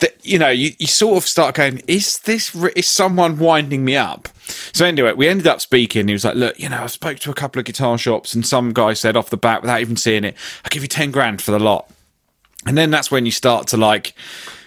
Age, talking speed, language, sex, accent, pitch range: 30-49, 260 wpm, English, male, British, 100-140 Hz